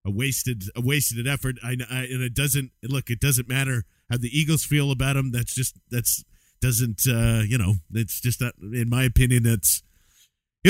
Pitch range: 120-150 Hz